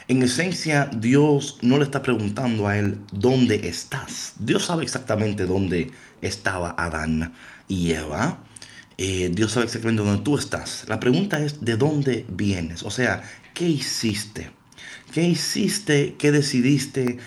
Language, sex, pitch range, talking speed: Spanish, male, 105-145 Hz, 140 wpm